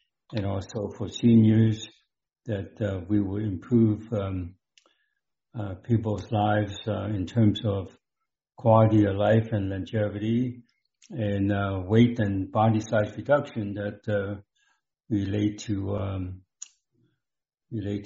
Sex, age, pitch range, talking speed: male, 60-79, 100-115 Hz, 115 wpm